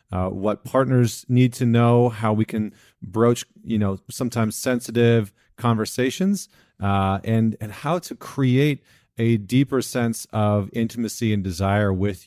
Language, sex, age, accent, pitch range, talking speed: English, male, 30-49, American, 100-125 Hz, 140 wpm